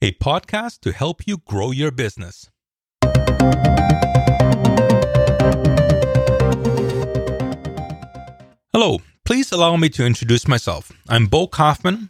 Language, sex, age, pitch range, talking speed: English, male, 40-59, 115-155 Hz, 90 wpm